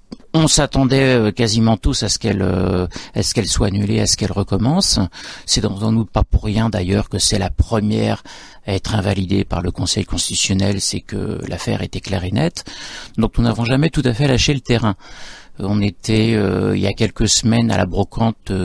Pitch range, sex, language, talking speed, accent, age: 95-120 Hz, male, French, 200 wpm, French, 50-69